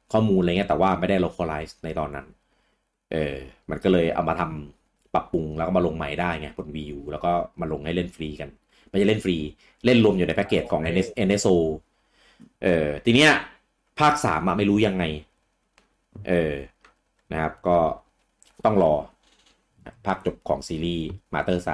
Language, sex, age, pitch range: English, male, 30-49, 80-100 Hz